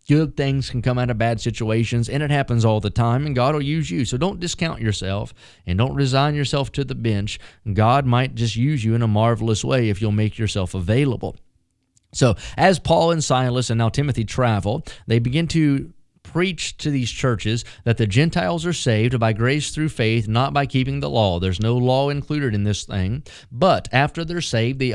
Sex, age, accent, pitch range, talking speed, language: male, 30-49, American, 110-140 Hz, 205 wpm, English